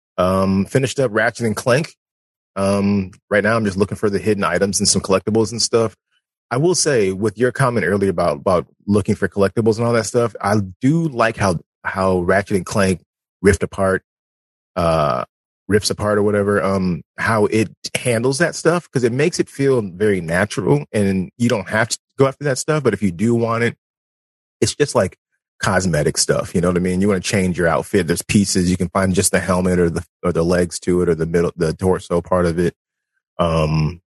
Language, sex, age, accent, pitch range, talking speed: English, male, 30-49, American, 90-110 Hz, 210 wpm